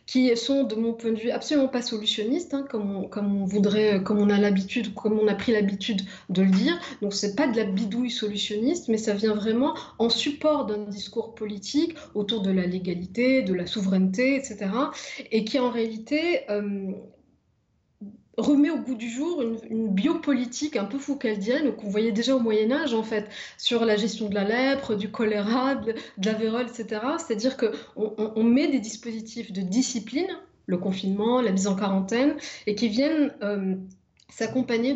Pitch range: 205-255 Hz